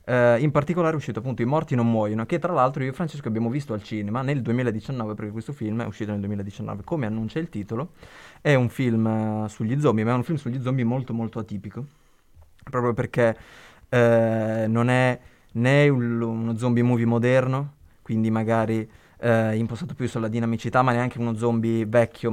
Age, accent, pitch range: 20-39, native, 110-125 Hz